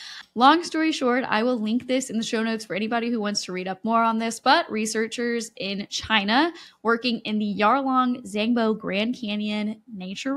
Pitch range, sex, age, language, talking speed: 210-270 Hz, female, 10-29, English, 190 wpm